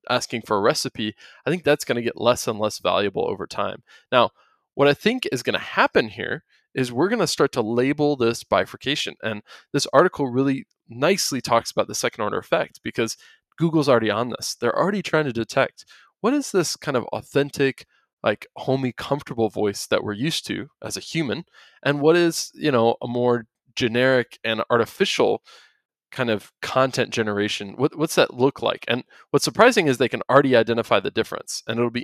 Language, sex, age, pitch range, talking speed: English, male, 20-39, 115-145 Hz, 195 wpm